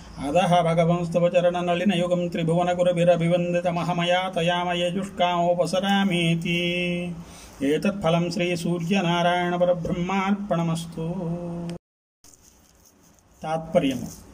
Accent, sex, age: native, male, 40-59